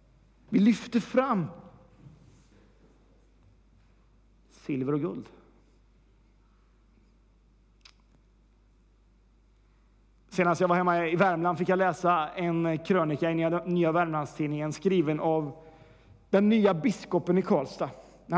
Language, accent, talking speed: Swedish, native, 90 wpm